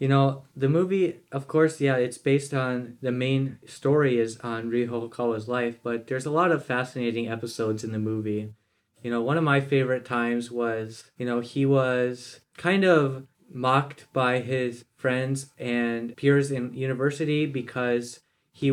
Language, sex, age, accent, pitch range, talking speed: English, male, 20-39, American, 115-135 Hz, 165 wpm